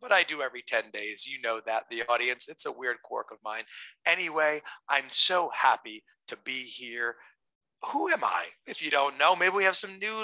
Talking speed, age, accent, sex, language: 210 wpm, 40-59, American, male, English